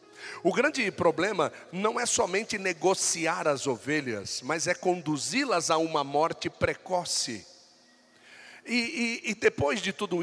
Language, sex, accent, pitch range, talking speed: Portuguese, male, Brazilian, 155-215 Hz, 125 wpm